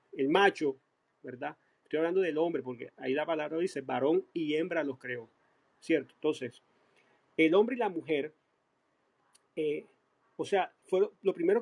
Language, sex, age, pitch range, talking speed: Spanish, male, 40-59, 145-210 Hz, 150 wpm